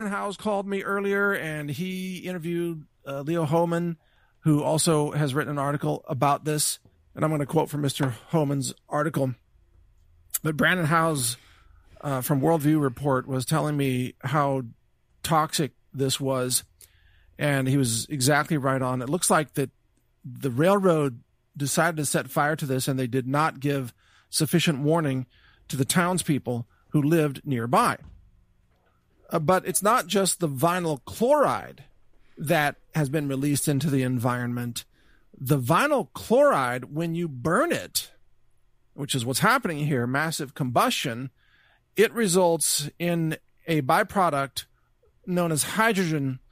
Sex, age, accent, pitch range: male, 50-69, American, 130-165 Hz